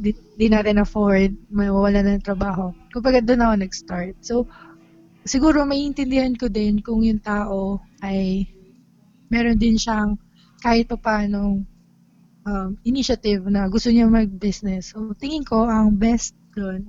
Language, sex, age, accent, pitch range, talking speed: Filipino, female, 20-39, native, 195-230 Hz, 140 wpm